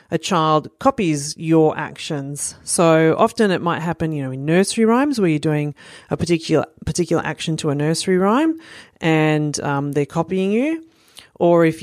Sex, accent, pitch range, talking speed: female, Australian, 150-185 Hz, 170 wpm